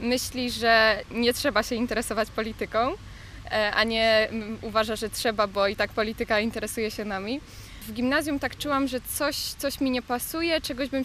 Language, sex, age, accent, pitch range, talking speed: Polish, female, 10-29, native, 220-260 Hz, 170 wpm